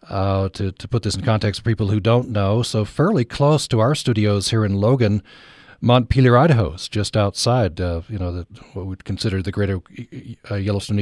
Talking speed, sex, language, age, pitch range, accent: 195 wpm, male, English, 40-59, 105-130 Hz, American